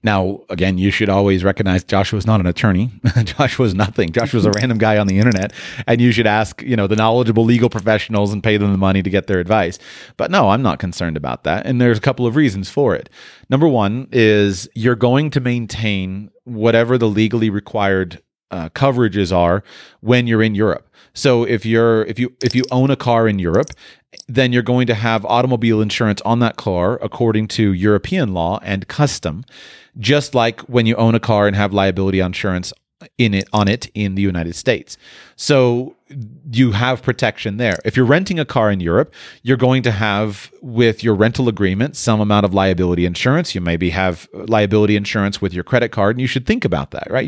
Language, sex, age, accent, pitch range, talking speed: English, male, 30-49, American, 100-125 Hz, 205 wpm